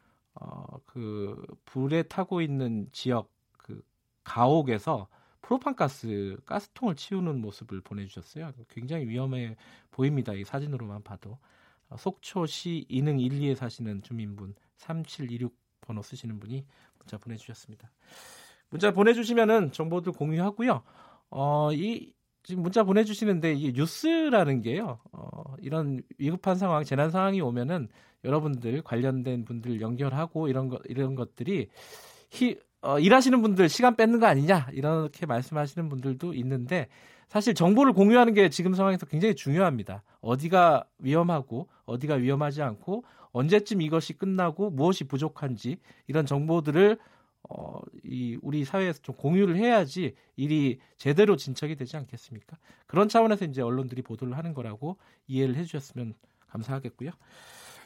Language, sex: Korean, male